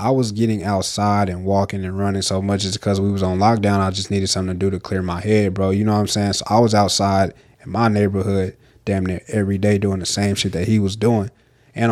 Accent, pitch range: American, 100-115 Hz